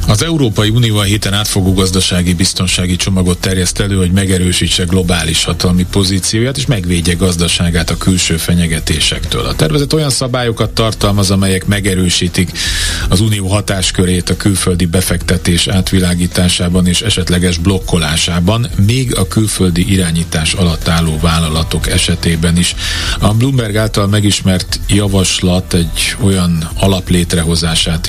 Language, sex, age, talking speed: Hungarian, male, 40-59, 120 wpm